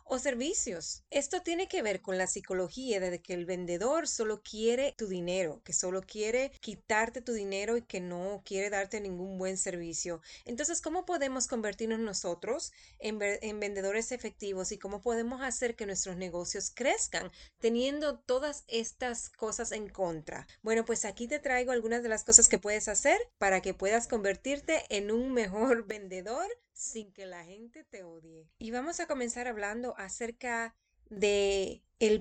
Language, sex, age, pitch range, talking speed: Spanish, female, 20-39, 190-245 Hz, 160 wpm